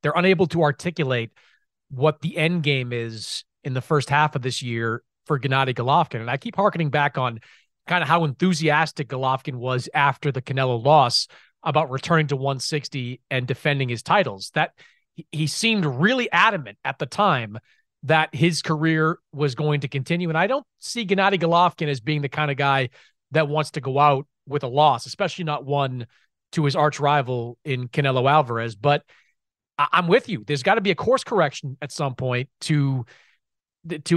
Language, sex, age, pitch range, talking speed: English, male, 30-49, 135-170 Hz, 185 wpm